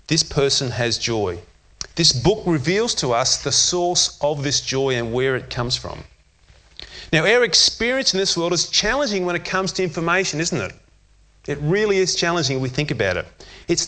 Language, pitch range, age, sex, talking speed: English, 130-180 Hz, 30-49, male, 190 wpm